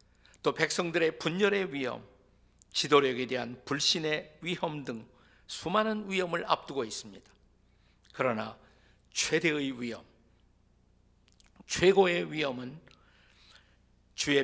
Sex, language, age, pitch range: male, Korean, 50-69, 125-175 Hz